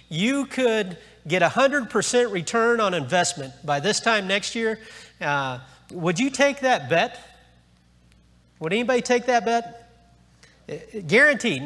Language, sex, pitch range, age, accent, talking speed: English, male, 140-225 Hz, 40-59, American, 125 wpm